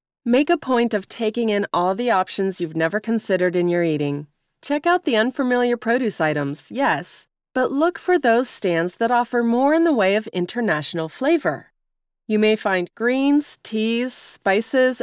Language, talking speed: English, 170 wpm